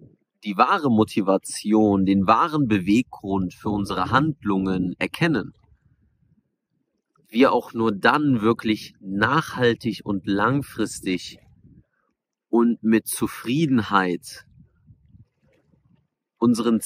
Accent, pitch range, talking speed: German, 100-130 Hz, 80 wpm